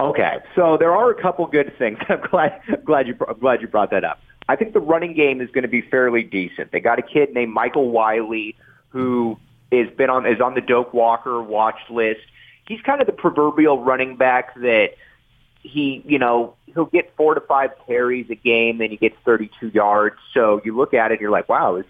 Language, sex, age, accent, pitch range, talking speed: English, male, 30-49, American, 115-150 Hz, 225 wpm